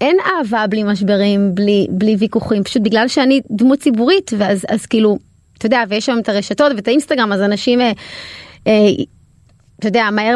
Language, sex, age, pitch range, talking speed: Hebrew, female, 20-39, 200-245 Hz, 160 wpm